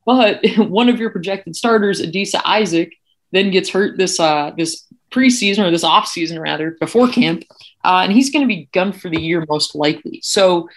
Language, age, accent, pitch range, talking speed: English, 30-49, American, 155-180 Hz, 190 wpm